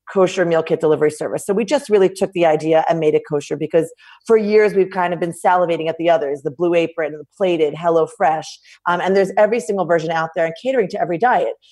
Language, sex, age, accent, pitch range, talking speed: English, female, 30-49, American, 165-195 Hz, 240 wpm